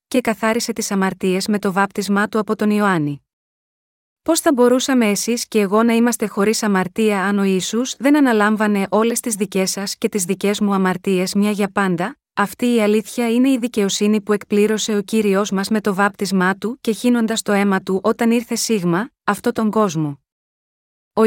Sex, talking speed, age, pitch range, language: female, 185 wpm, 20-39, 195-235 Hz, Greek